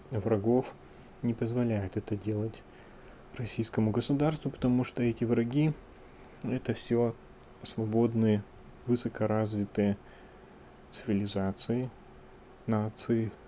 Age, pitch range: 30-49, 100-115 Hz